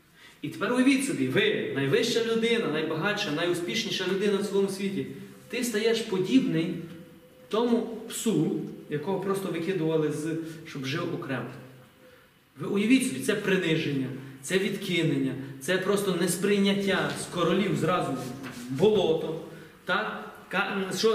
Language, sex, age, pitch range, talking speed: Ukrainian, male, 30-49, 150-210 Hz, 115 wpm